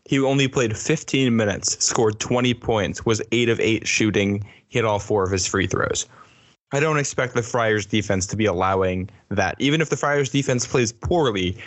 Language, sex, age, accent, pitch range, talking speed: English, male, 10-29, American, 100-125 Hz, 190 wpm